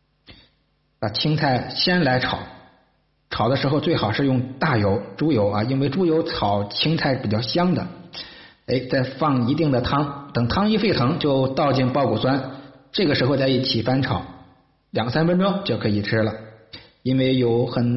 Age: 50-69